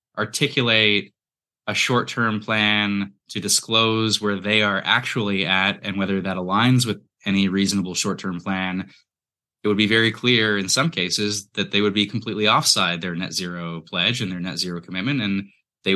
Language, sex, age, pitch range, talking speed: English, male, 20-39, 95-110 Hz, 170 wpm